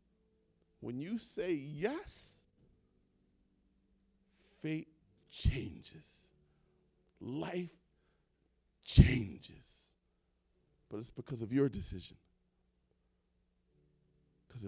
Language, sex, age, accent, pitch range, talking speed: English, male, 40-59, American, 125-185 Hz, 60 wpm